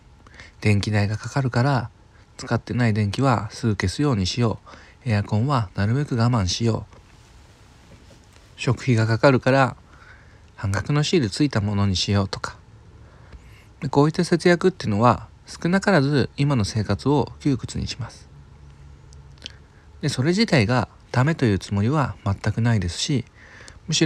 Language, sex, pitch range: Japanese, male, 100-135 Hz